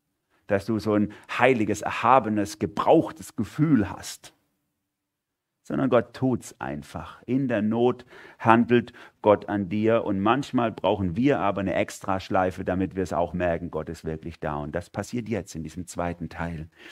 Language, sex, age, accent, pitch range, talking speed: German, male, 40-59, German, 90-110 Hz, 160 wpm